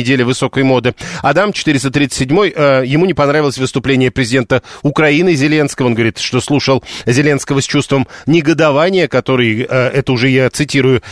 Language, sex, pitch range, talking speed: Russian, male, 135-160 Hz, 135 wpm